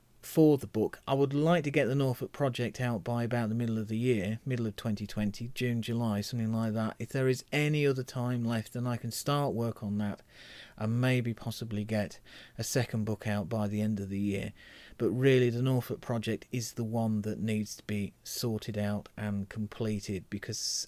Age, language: 40-59, English